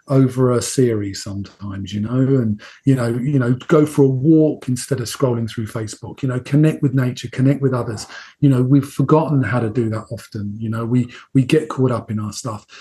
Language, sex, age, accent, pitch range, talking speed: English, male, 40-59, British, 120-150 Hz, 220 wpm